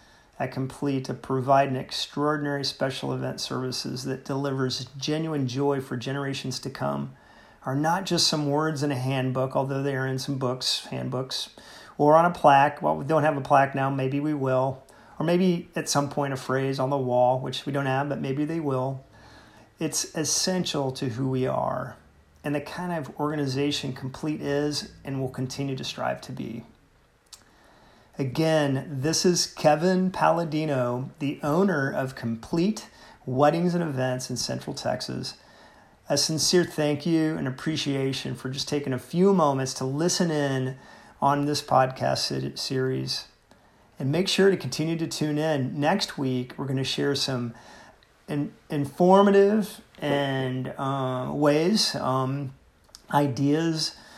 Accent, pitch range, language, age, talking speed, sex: American, 130-155 Hz, English, 40-59, 155 wpm, male